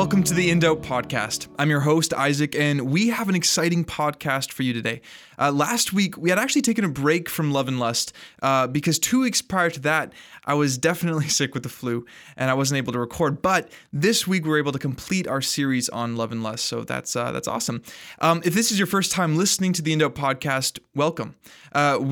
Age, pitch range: 20-39, 125-165 Hz